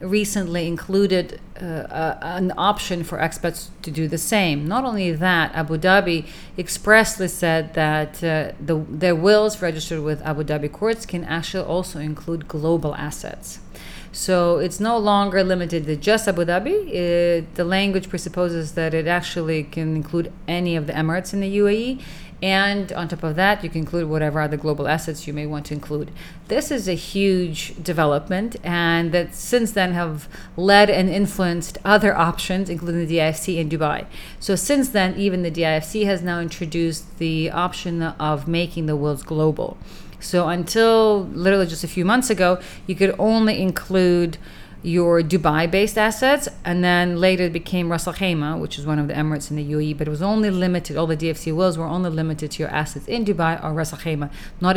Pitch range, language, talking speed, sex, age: 155-185 Hz, English, 180 wpm, female, 30-49